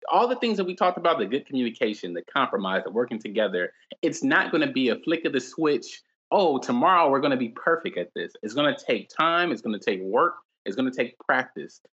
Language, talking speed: English, 245 wpm